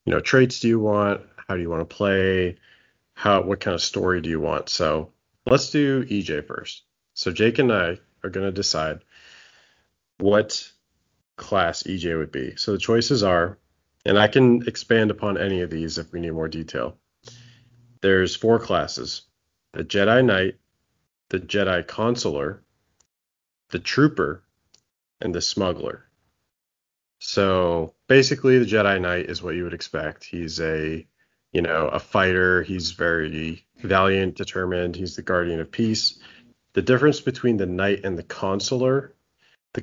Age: 30-49